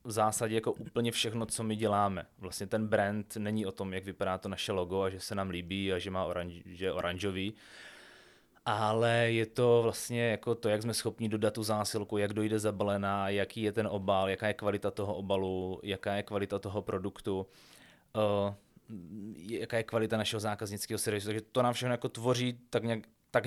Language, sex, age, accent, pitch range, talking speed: Czech, male, 20-39, native, 100-110 Hz, 195 wpm